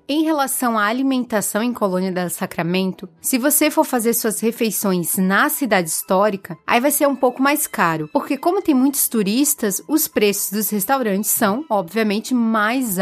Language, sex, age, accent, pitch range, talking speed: Portuguese, female, 20-39, Brazilian, 210-270 Hz, 165 wpm